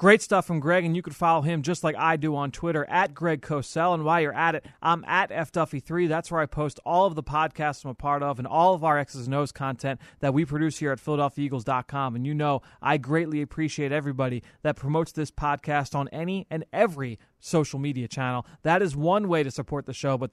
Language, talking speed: English, 235 wpm